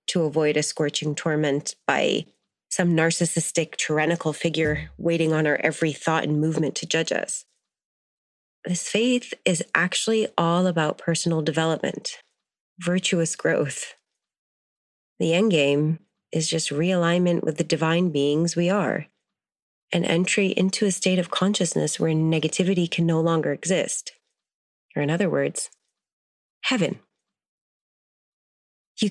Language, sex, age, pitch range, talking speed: English, female, 30-49, 160-195 Hz, 125 wpm